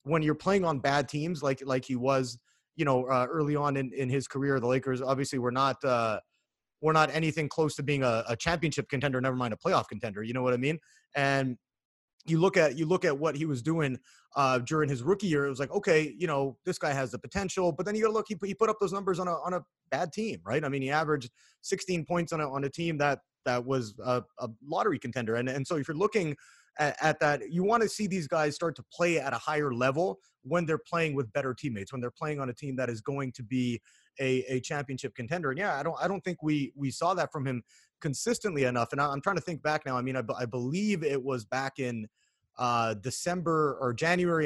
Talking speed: 250 wpm